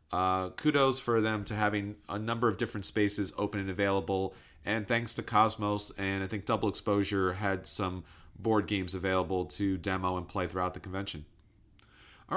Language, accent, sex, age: English, American, male, 30-49